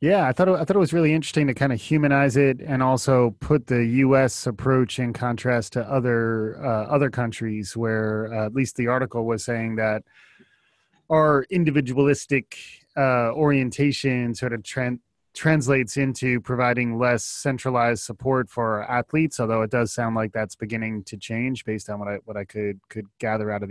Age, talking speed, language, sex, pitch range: 20-39, 185 wpm, English, male, 110-135 Hz